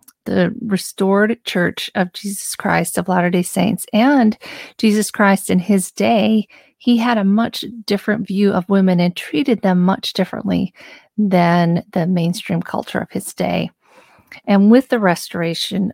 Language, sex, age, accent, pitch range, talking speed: English, female, 40-59, American, 185-225 Hz, 145 wpm